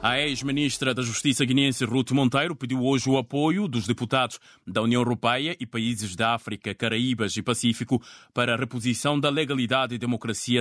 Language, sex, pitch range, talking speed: Portuguese, male, 110-130 Hz, 170 wpm